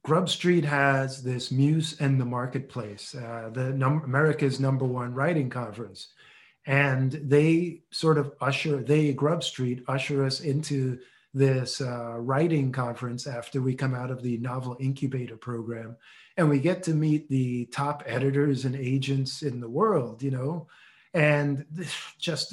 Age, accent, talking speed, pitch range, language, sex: 40-59, American, 150 wpm, 130-155 Hz, English, male